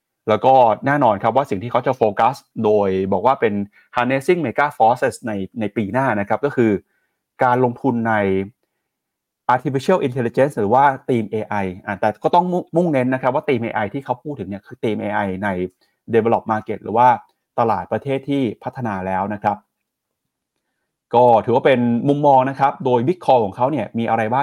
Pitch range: 105-135 Hz